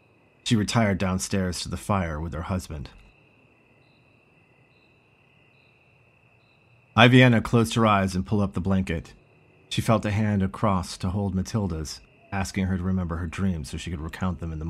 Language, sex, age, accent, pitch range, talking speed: English, male, 40-59, American, 90-115 Hz, 160 wpm